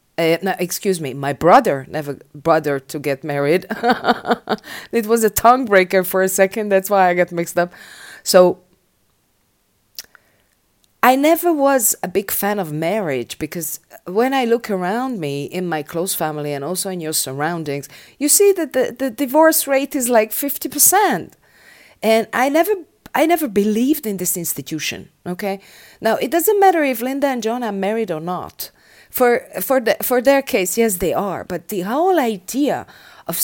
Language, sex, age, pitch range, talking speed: English, female, 30-49, 180-270 Hz, 165 wpm